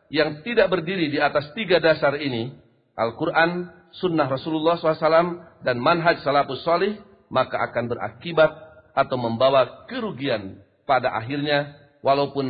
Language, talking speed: Indonesian, 120 wpm